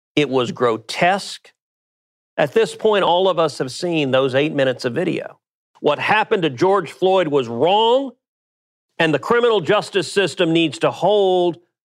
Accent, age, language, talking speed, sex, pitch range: American, 50-69, English, 155 wpm, male, 150-205 Hz